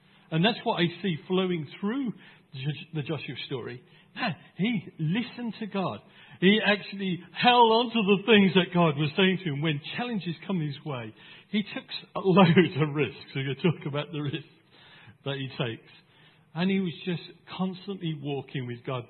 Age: 50-69